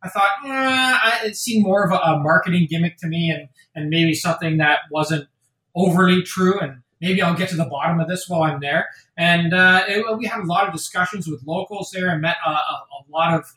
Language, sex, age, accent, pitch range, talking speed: English, male, 20-39, American, 155-185 Hz, 220 wpm